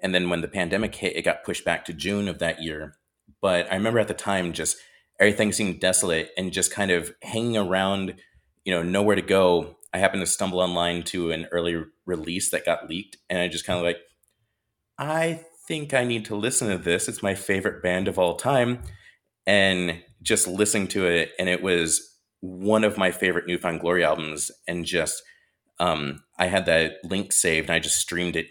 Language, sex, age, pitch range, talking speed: English, male, 30-49, 85-100 Hz, 205 wpm